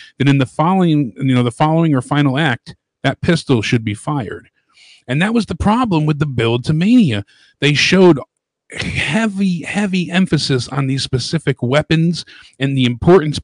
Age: 40-59